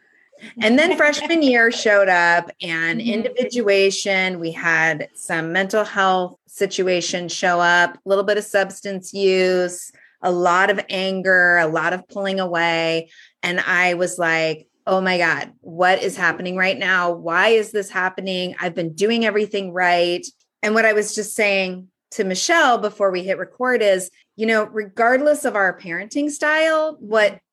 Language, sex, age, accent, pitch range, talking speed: English, female, 30-49, American, 175-210 Hz, 160 wpm